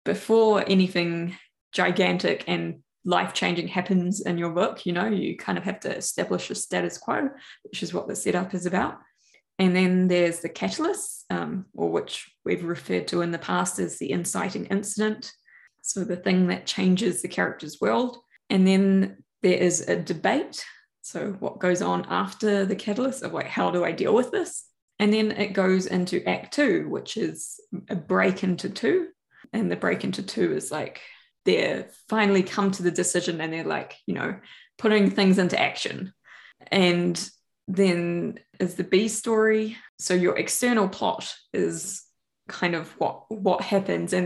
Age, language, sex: 20-39, English, female